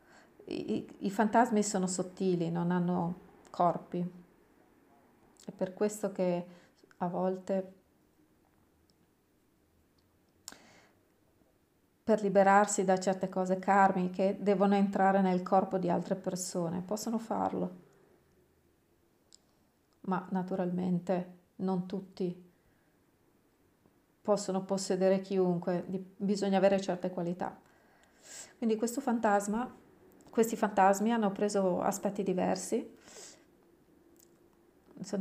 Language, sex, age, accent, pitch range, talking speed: Italian, female, 30-49, native, 185-205 Hz, 85 wpm